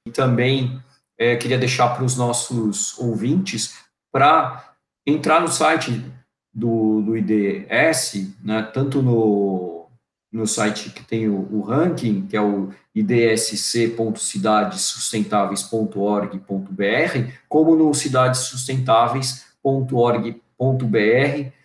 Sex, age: male, 50-69